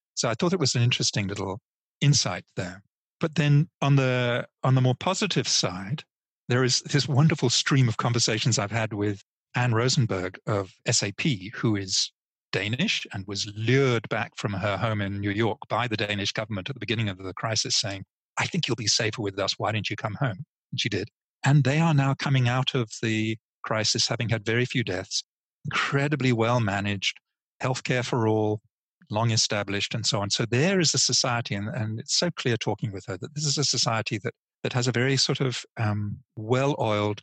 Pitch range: 110-135 Hz